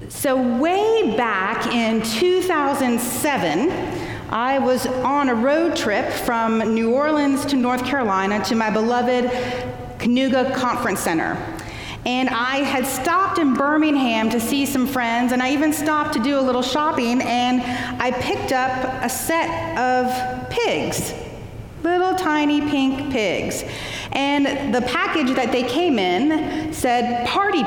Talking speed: 135 wpm